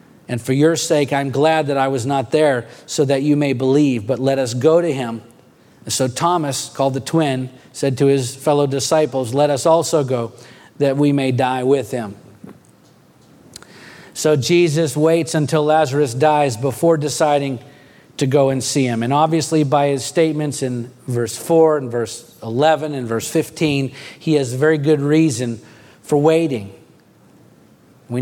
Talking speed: 165 wpm